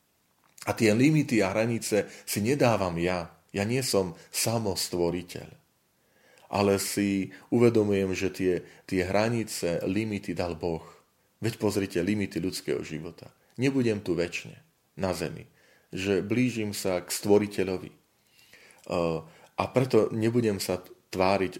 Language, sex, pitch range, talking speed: Slovak, male, 90-110 Hz, 115 wpm